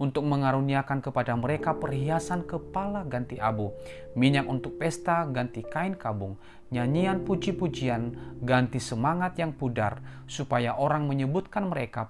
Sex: male